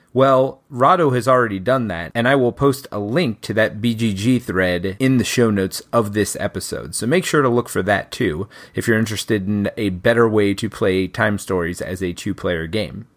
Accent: American